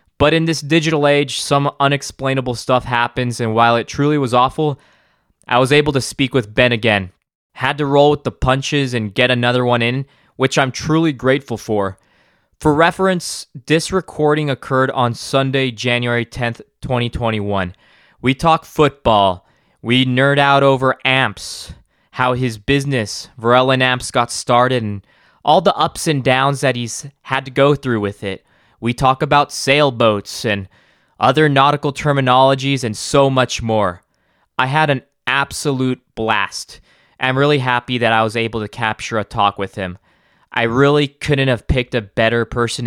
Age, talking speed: 20-39, 165 wpm